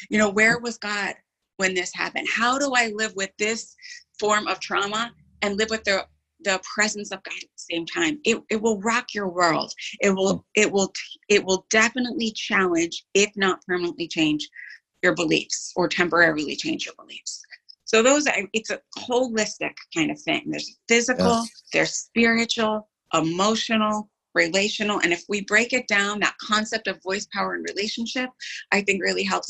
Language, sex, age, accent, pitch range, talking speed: English, female, 30-49, American, 180-230 Hz, 175 wpm